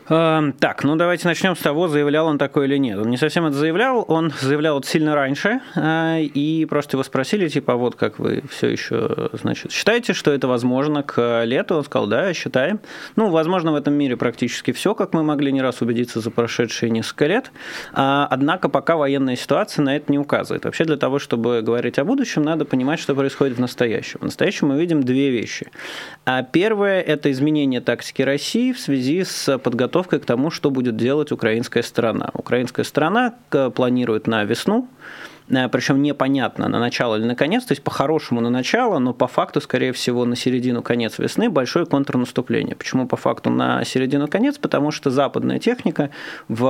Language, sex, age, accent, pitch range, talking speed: Russian, male, 20-39, native, 125-160 Hz, 185 wpm